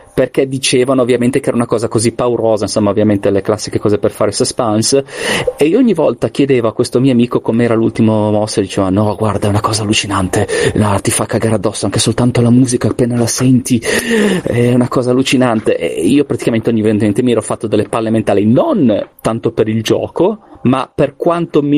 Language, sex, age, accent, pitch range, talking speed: Italian, male, 30-49, native, 105-130 Hz, 200 wpm